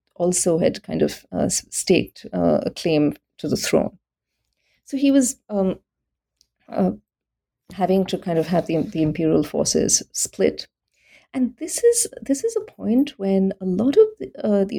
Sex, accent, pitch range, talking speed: female, Indian, 170-230 Hz, 165 wpm